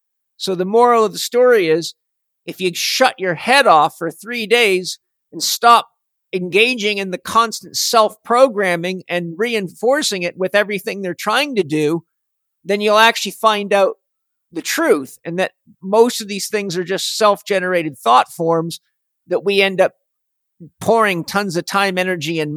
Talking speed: 165 wpm